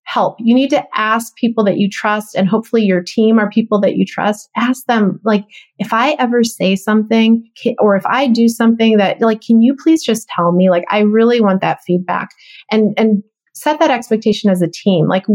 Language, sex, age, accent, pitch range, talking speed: English, female, 30-49, American, 195-240 Hz, 215 wpm